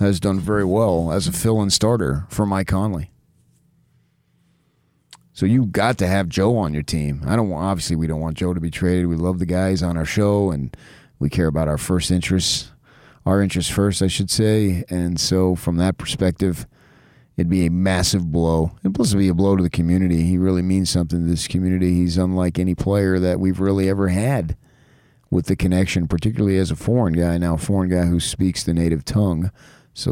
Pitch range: 85-100 Hz